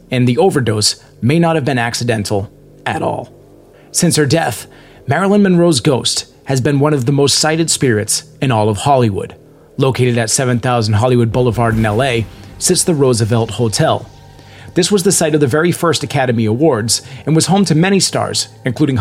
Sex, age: male, 30-49